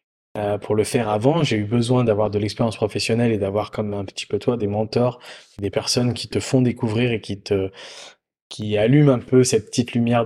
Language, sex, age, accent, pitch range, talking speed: French, male, 20-39, French, 105-130 Hz, 215 wpm